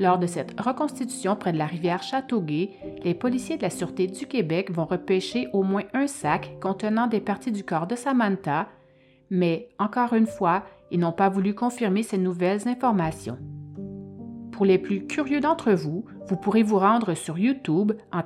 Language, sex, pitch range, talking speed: French, female, 180-245 Hz, 180 wpm